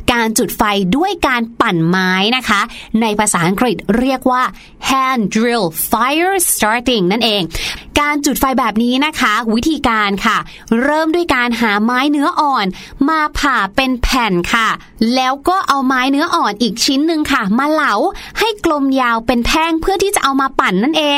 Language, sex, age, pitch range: Thai, female, 30-49, 230-310 Hz